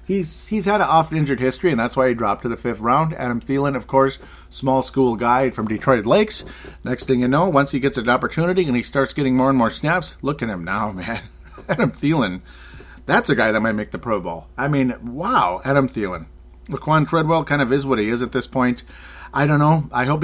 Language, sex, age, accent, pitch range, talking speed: English, male, 40-59, American, 115-140 Hz, 235 wpm